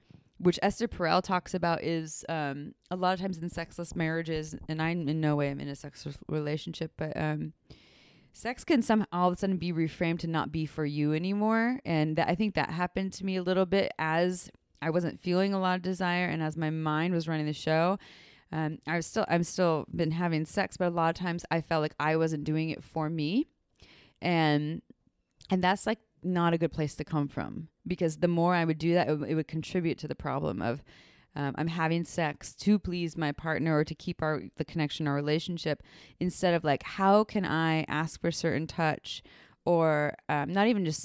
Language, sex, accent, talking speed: English, female, American, 220 wpm